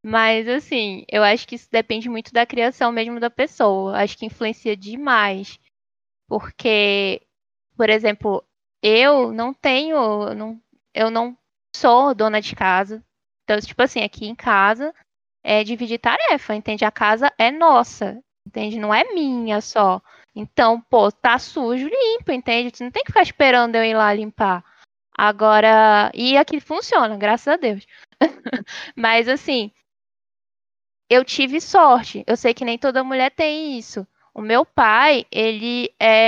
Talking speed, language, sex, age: 145 wpm, Portuguese, female, 10-29